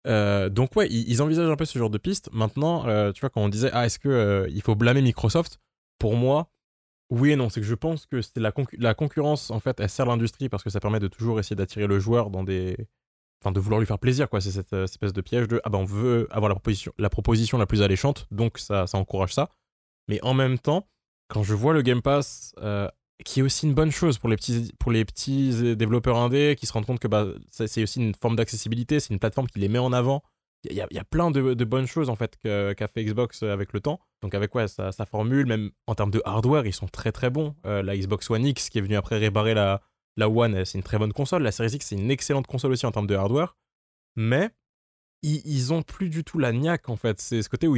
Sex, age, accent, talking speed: male, 20-39, French, 260 wpm